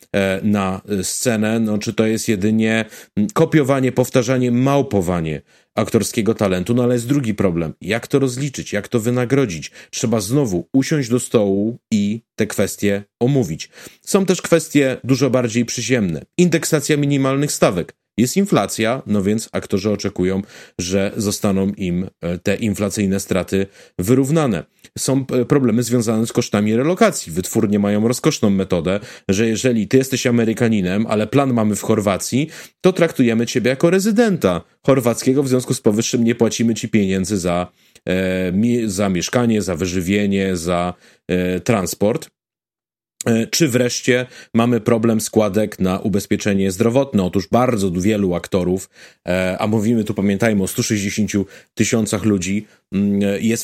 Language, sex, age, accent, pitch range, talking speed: Polish, male, 30-49, native, 100-125 Hz, 130 wpm